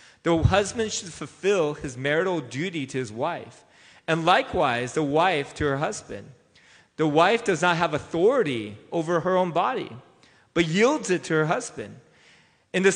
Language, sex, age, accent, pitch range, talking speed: English, male, 30-49, American, 115-165 Hz, 160 wpm